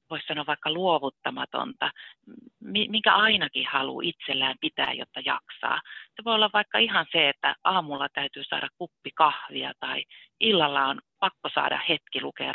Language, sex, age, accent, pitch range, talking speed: Finnish, female, 30-49, native, 150-215 Hz, 145 wpm